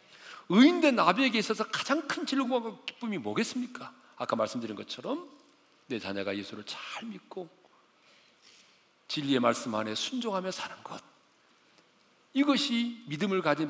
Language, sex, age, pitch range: Korean, male, 40-59, 195-265 Hz